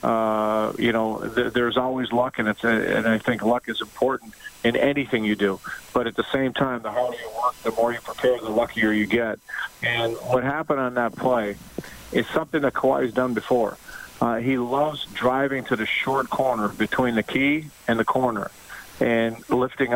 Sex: male